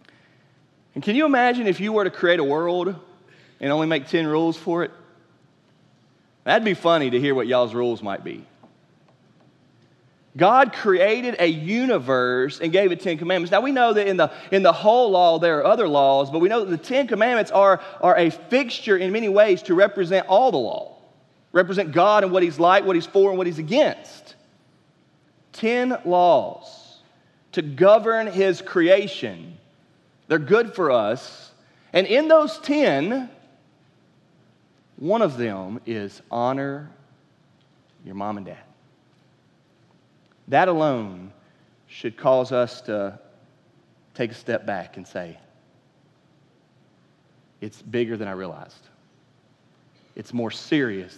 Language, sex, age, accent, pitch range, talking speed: English, male, 30-49, American, 130-200 Hz, 145 wpm